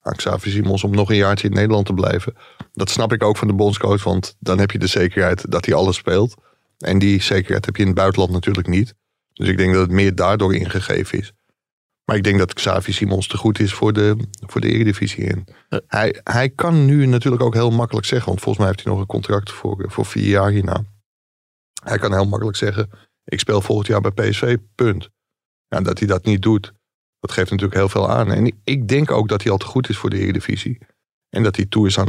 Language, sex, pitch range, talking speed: Dutch, male, 95-115 Hz, 235 wpm